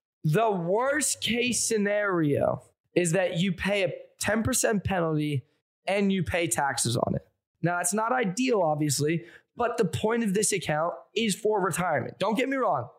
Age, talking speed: 20-39, 160 wpm